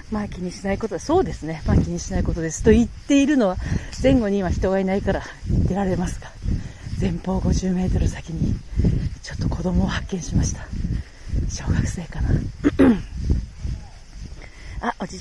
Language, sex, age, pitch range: Japanese, female, 40-59, 165-215 Hz